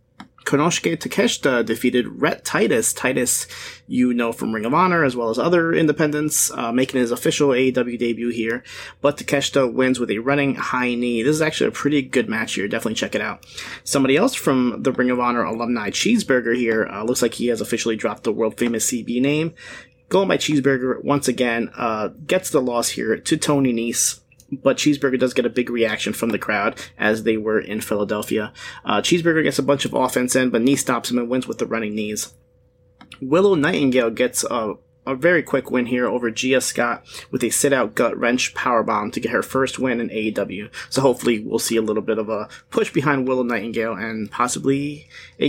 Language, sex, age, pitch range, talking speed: English, male, 30-49, 115-145 Hz, 200 wpm